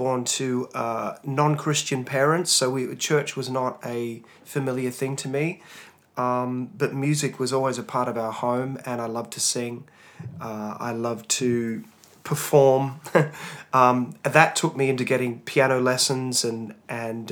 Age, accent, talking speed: 30-49, Australian, 155 wpm